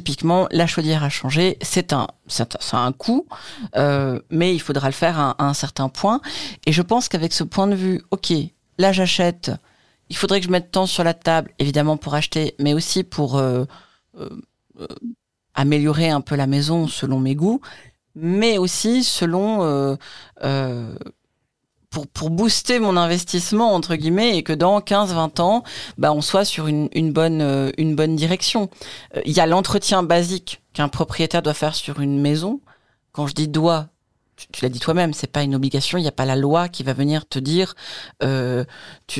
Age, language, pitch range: 40-59, French, 145-185 Hz